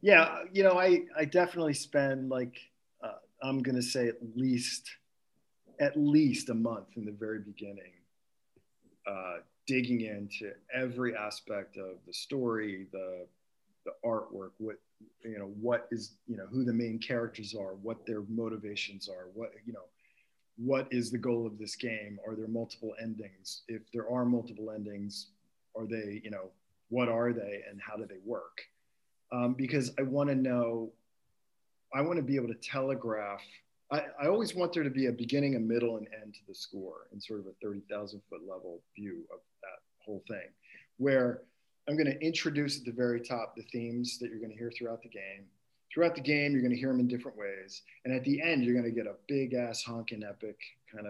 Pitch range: 105-130 Hz